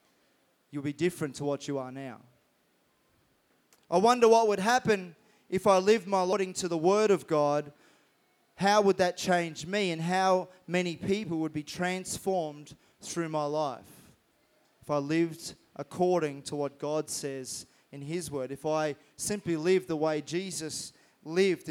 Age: 20-39